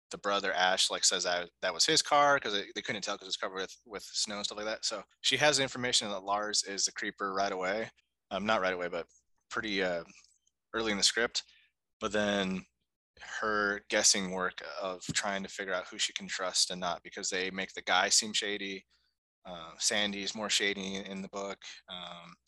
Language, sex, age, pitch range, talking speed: English, male, 20-39, 95-115 Hz, 205 wpm